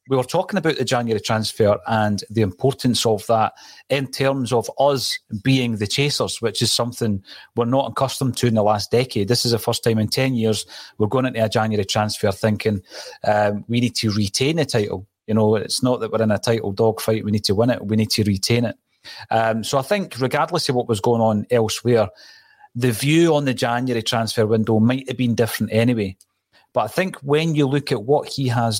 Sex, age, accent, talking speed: male, 30-49, British, 220 wpm